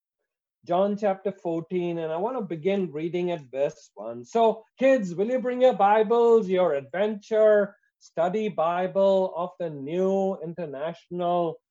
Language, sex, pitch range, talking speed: English, male, 140-200 Hz, 140 wpm